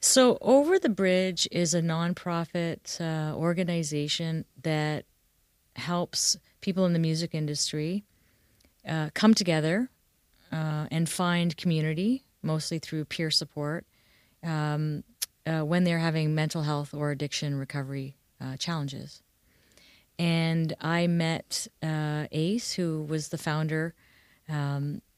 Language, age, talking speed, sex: English, 30-49, 115 wpm, female